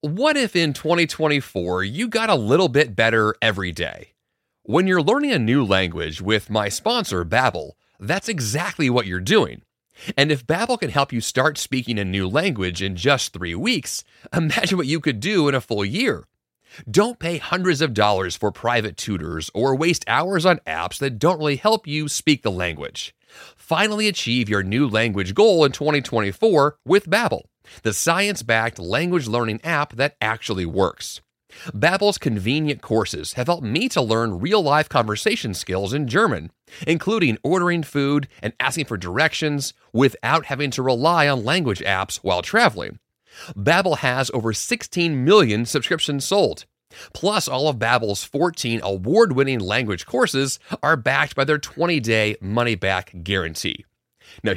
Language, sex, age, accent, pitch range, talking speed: English, male, 30-49, American, 110-160 Hz, 155 wpm